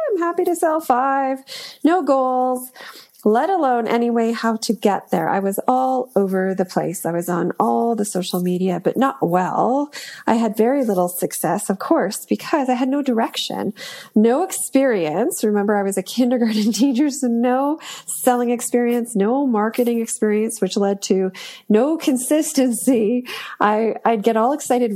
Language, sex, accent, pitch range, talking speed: English, female, American, 200-260 Hz, 160 wpm